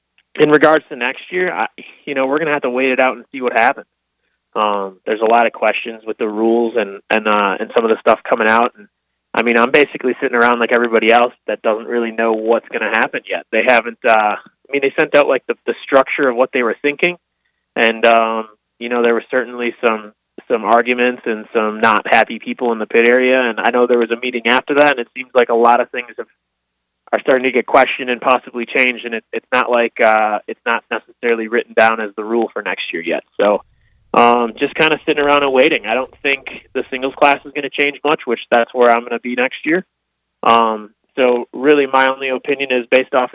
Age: 20-39